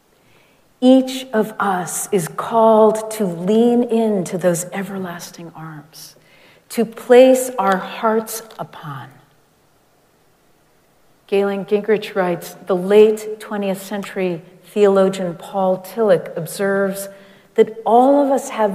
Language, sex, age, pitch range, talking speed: English, female, 50-69, 175-220 Hz, 100 wpm